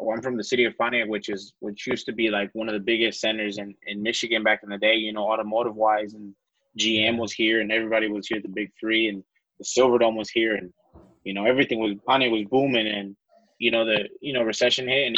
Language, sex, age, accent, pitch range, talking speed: English, male, 20-39, American, 105-120 Hz, 250 wpm